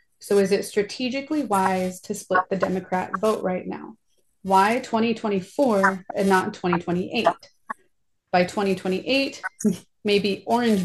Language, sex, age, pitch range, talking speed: English, female, 30-49, 185-220 Hz, 120 wpm